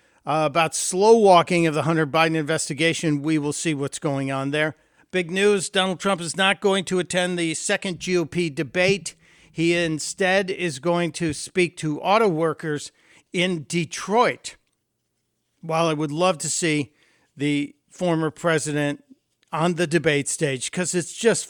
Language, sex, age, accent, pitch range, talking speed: English, male, 60-79, American, 155-195 Hz, 155 wpm